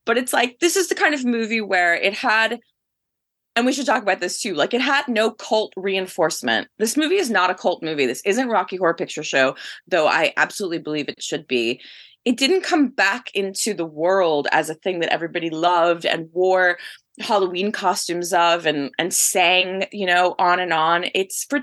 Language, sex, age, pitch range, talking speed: English, female, 20-39, 180-255 Hz, 205 wpm